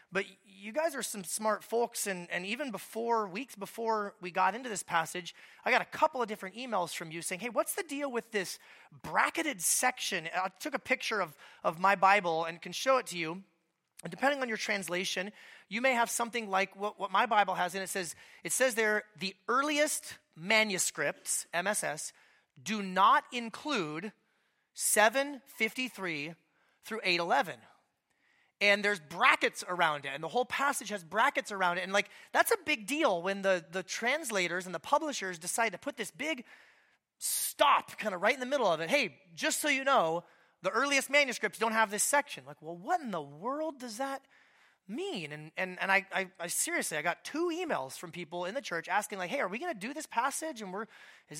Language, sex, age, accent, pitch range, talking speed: English, male, 30-49, American, 185-260 Hz, 200 wpm